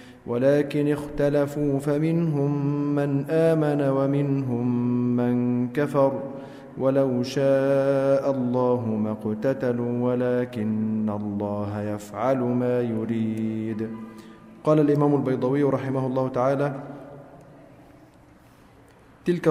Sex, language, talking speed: male, Arabic, 75 wpm